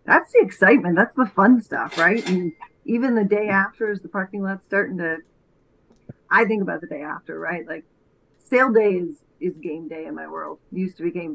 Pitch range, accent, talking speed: 170-205 Hz, American, 210 wpm